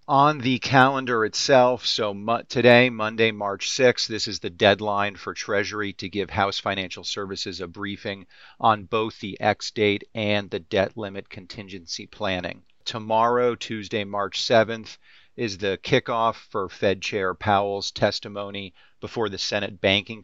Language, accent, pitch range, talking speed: English, American, 95-115 Hz, 145 wpm